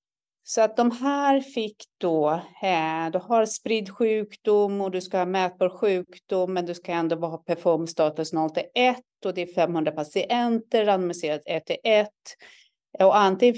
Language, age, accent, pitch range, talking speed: Swedish, 30-49, native, 175-215 Hz, 150 wpm